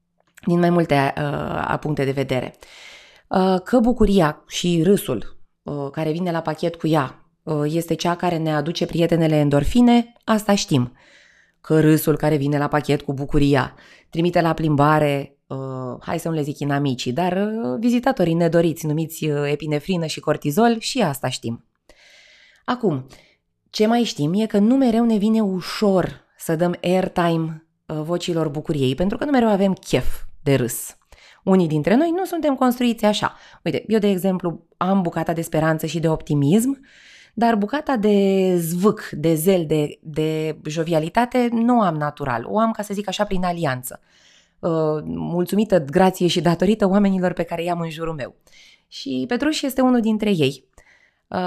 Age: 20-39